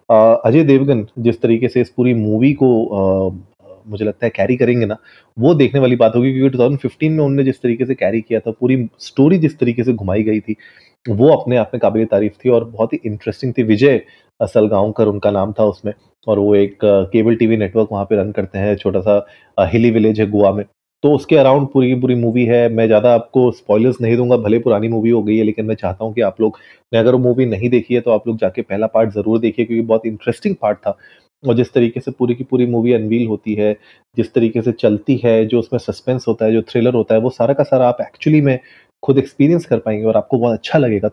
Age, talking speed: 30-49, 240 wpm